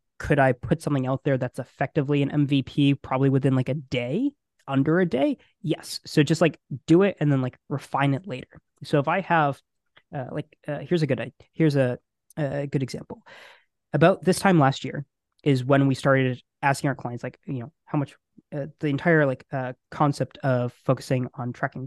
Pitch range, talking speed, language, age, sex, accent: 130-155 Hz, 200 wpm, English, 20-39, male, American